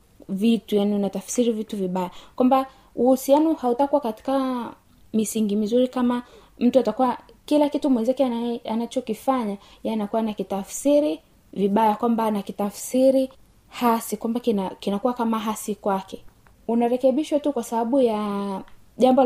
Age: 20-39